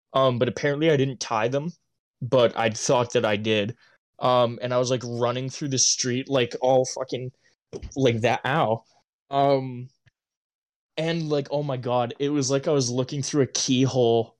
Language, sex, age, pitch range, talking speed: English, male, 20-39, 125-145 Hz, 180 wpm